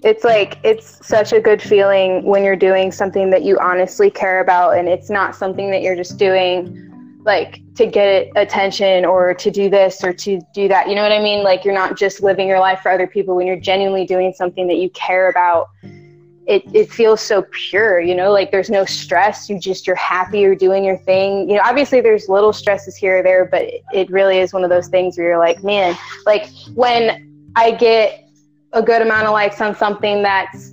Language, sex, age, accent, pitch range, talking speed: English, female, 10-29, American, 185-210 Hz, 220 wpm